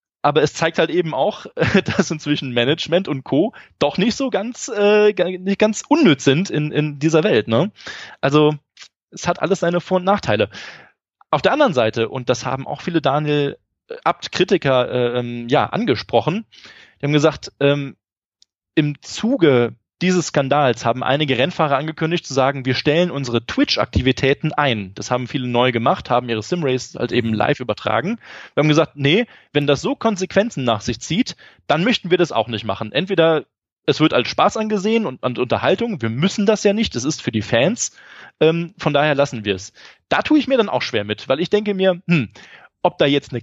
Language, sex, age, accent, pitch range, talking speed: German, male, 20-39, German, 125-180 Hz, 185 wpm